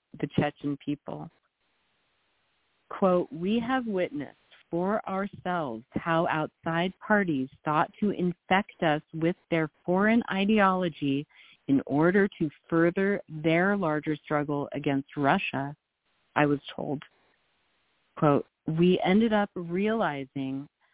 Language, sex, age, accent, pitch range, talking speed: English, female, 40-59, American, 150-195 Hz, 105 wpm